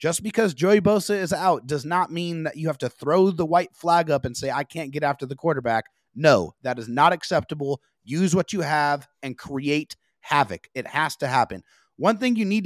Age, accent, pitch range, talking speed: 30-49, American, 135-175 Hz, 220 wpm